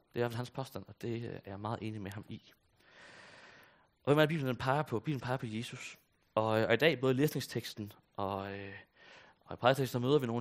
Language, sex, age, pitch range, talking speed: Danish, male, 30-49, 100-125 Hz, 230 wpm